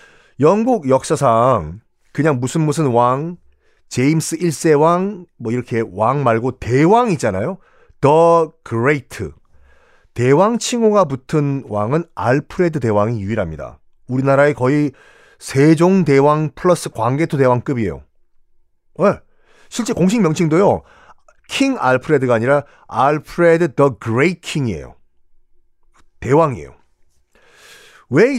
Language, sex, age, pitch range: Korean, male, 40-59, 115-175 Hz